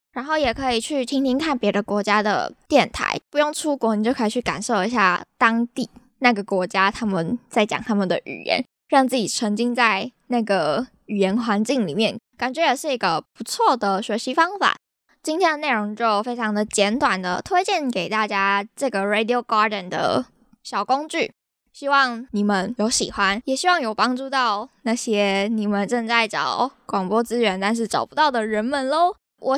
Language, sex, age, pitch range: Chinese, female, 10-29, 210-270 Hz